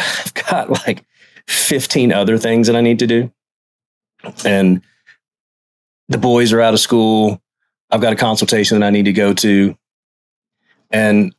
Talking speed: 155 wpm